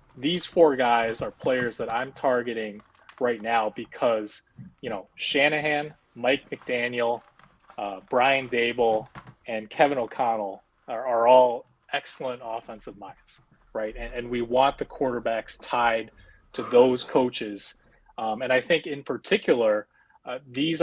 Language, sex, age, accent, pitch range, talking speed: English, male, 30-49, American, 115-145 Hz, 135 wpm